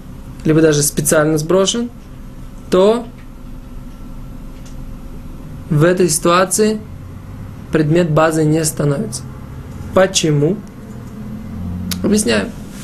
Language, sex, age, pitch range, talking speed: Russian, male, 20-39, 155-195 Hz, 65 wpm